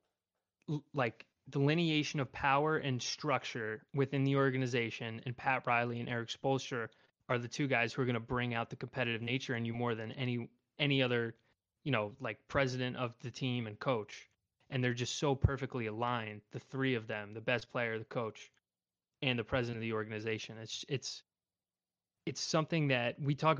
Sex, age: male, 20-39